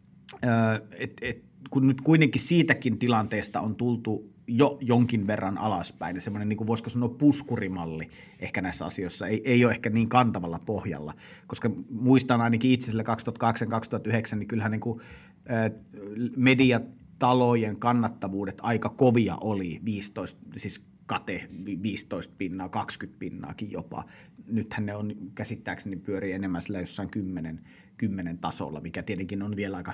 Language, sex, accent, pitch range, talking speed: Finnish, male, native, 100-125 Hz, 135 wpm